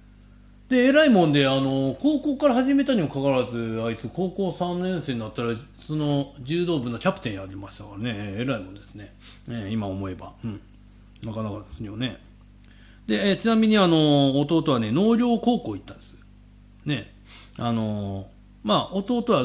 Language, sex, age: Japanese, male, 40-59